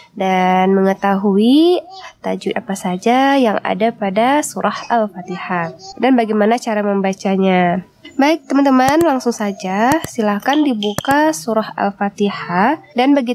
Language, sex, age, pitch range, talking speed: Indonesian, female, 20-39, 205-290 Hz, 110 wpm